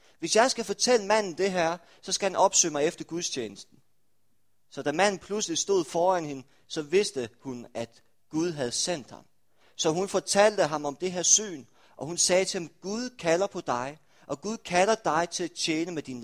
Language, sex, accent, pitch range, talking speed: Danish, male, native, 130-190 Hz, 205 wpm